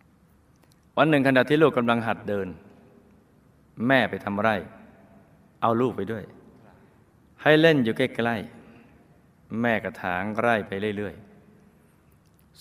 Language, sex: Thai, male